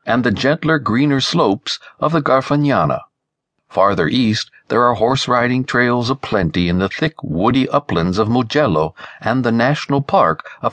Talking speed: 150 wpm